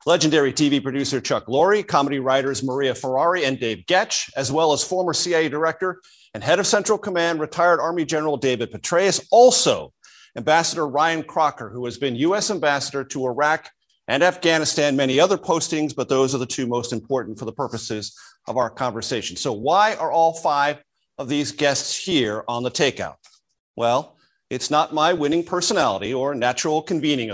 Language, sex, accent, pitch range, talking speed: English, male, American, 125-170 Hz, 170 wpm